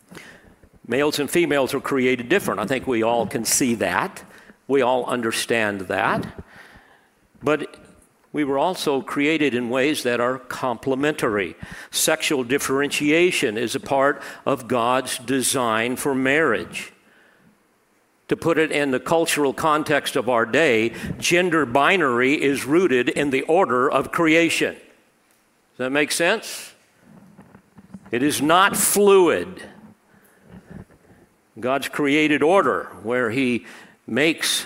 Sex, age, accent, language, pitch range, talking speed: male, 50-69, American, English, 125-160 Hz, 120 wpm